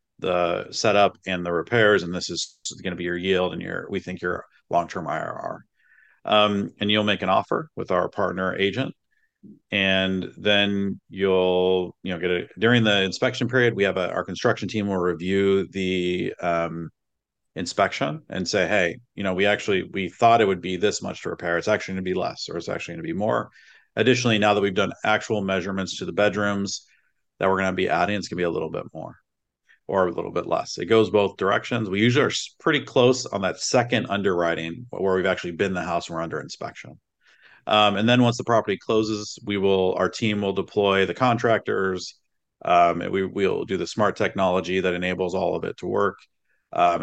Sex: male